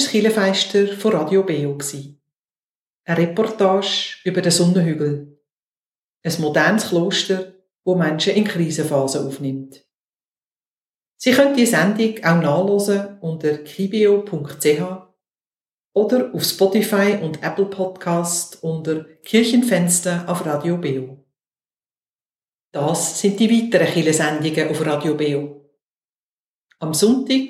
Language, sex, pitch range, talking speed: German, female, 150-200 Hz, 100 wpm